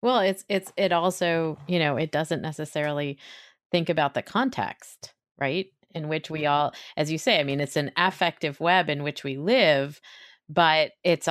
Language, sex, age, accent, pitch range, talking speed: English, female, 30-49, American, 155-185 Hz, 180 wpm